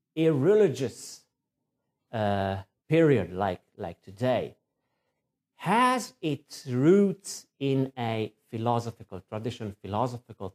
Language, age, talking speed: English, 50-69, 85 wpm